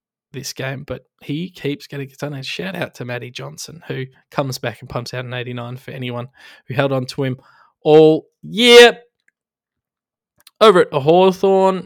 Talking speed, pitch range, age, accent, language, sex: 160 wpm, 125-150 Hz, 20-39, Australian, English, male